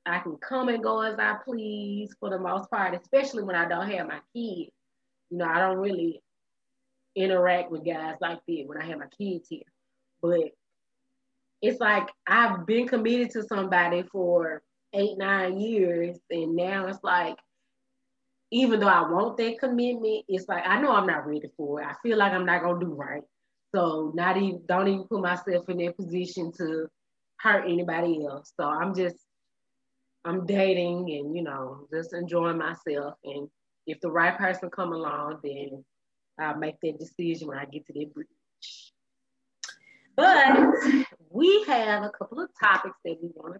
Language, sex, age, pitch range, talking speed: English, female, 20-39, 165-220 Hz, 175 wpm